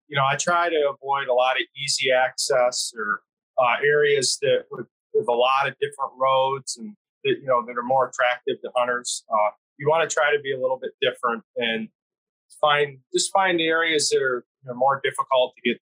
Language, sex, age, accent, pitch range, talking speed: English, male, 30-49, American, 130-170 Hz, 210 wpm